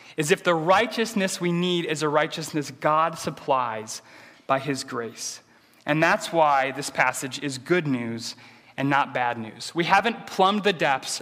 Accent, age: American, 30-49